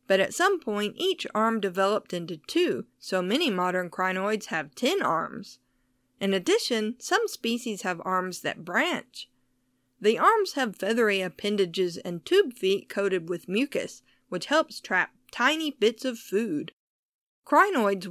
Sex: female